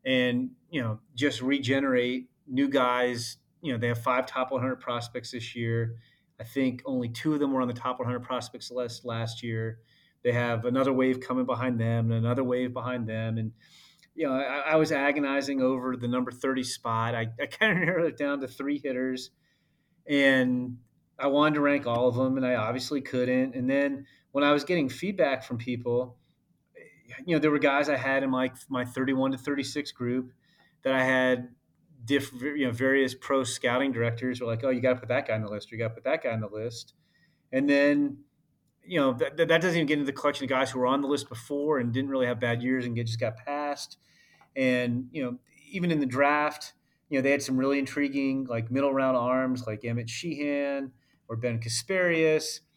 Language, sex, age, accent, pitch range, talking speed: English, male, 30-49, American, 125-145 Hz, 215 wpm